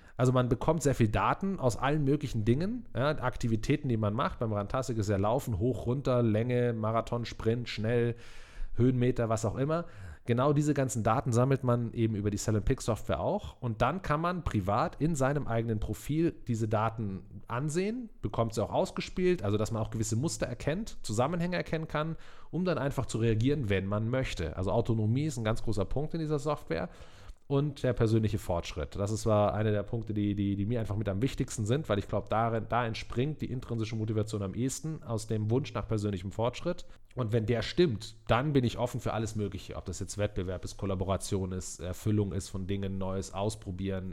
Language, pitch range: German, 105-135 Hz